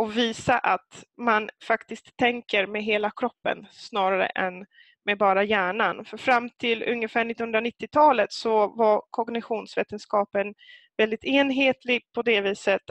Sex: female